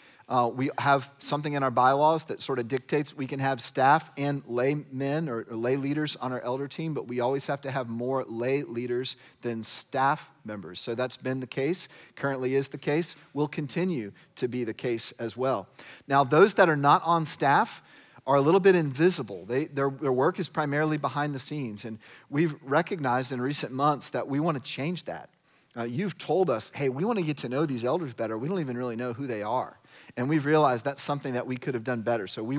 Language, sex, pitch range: English, male, 125-150 Hz